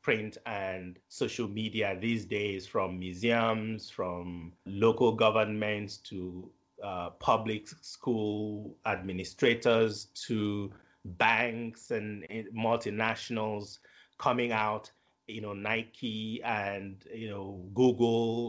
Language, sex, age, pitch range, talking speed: English, male, 30-49, 105-120 Hz, 95 wpm